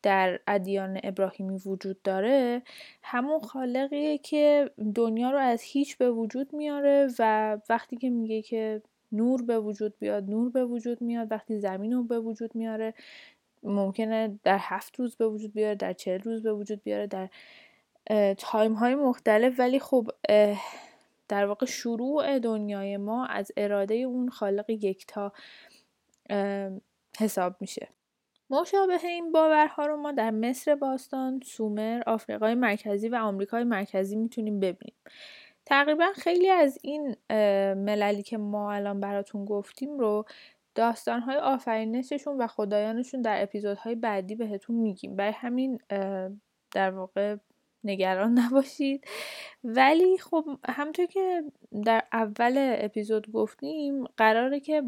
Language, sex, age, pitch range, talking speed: Persian, female, 10-29, 210-265 Hz, 130 wpm